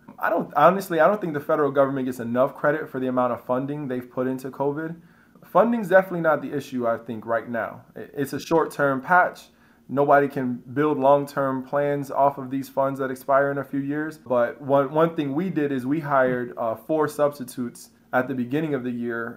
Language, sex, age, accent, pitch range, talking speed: English, male, 20-39, American, 125-145 Hz, 210 wpm